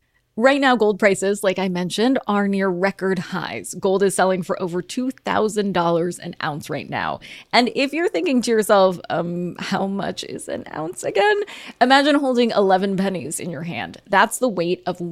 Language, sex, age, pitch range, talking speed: English, female, 20-39, 185-240 Hz, 180 wpm